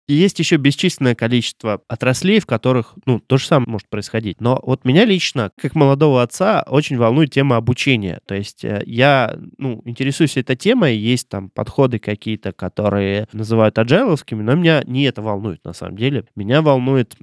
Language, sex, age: Russian, male, 20-39